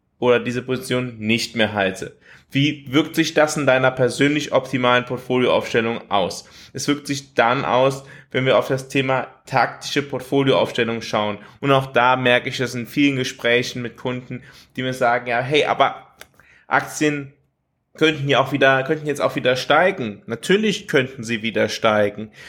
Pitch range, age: 120-140 Hz, 20-39